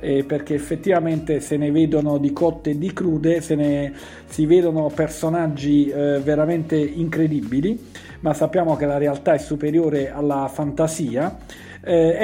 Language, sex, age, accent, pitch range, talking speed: Italian, male, 50-69, native, 150-175 Hz, 130 wpm